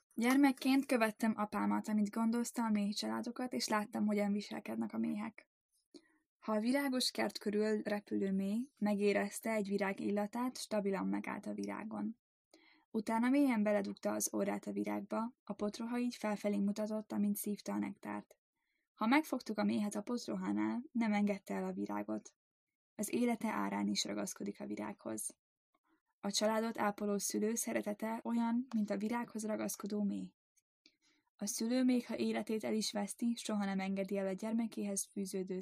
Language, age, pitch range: Hungarian, 10-29, 190-235 Hz